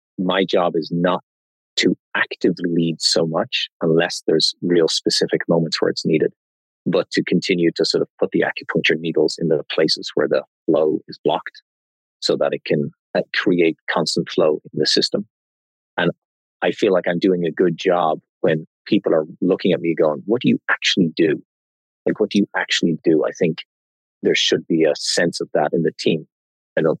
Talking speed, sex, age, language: 190 wpm, male, 30-49, English